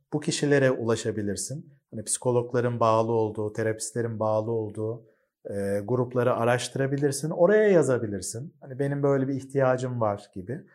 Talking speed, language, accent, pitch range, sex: 125 wpm, Turkish, native, 125-155 Hz, male